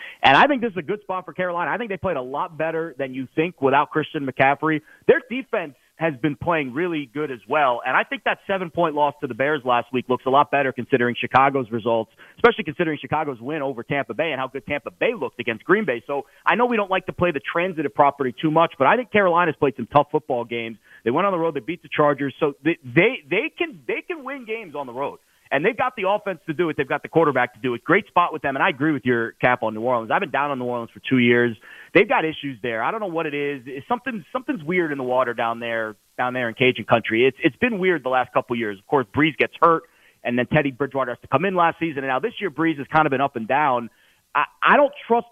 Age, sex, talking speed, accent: 30-49, male, 275 wpm, American